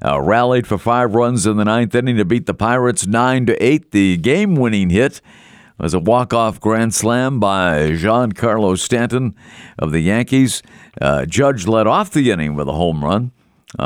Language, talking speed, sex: English, 175 wpm, male